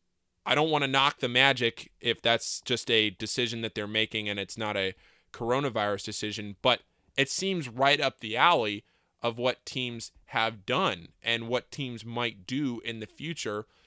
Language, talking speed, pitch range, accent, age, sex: English, 175 wpm, 105-130 Hz, American, 20-39, male